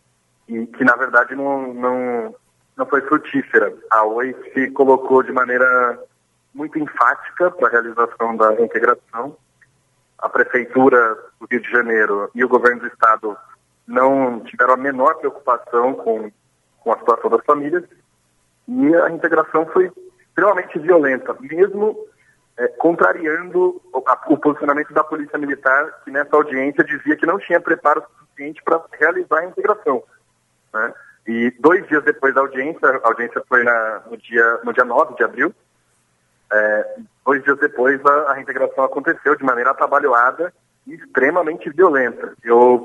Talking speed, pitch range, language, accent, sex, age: 145 wpm, 120-165 Hz, Portuguese, Brazilian, male, 40-59